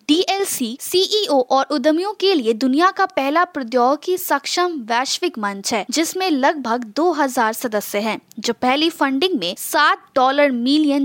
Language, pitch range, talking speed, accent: Hindi, 250-335 Hz, 145 wpm, native